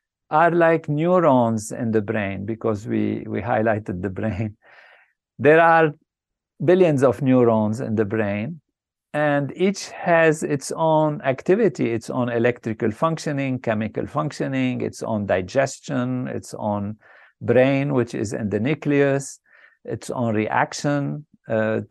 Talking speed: 130 wpm